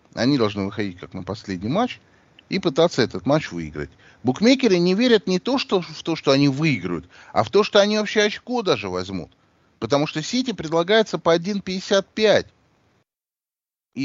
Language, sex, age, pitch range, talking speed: Russian, male, 30-49, 105-160 Hz, 160 wpm